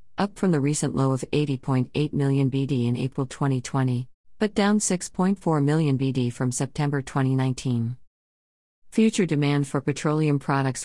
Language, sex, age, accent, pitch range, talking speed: English, female, 50-69, American, 130-160 Hz, 140 wpm